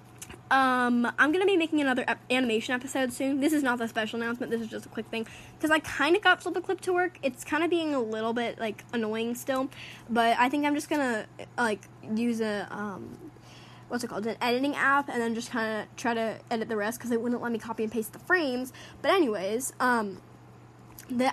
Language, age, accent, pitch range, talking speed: English, 10-29, American, 230-295 Hz, 235 wpm